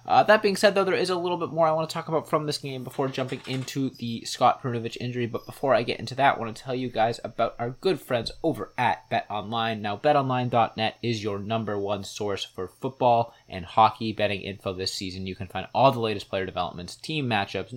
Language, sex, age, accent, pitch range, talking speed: English, male, 20-39, American, 100-125 Hz, 240 wpm